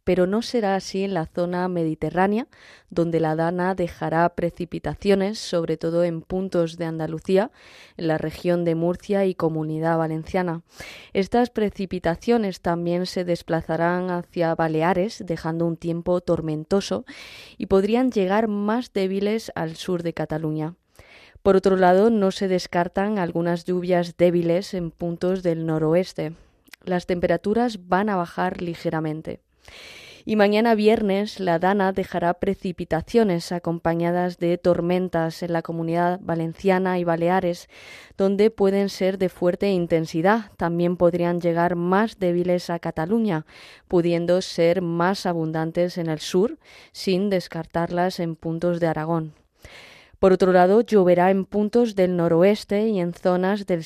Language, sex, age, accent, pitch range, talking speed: Spanish, female, 20-39, Spanish, 170-195 Hz, 135 wpm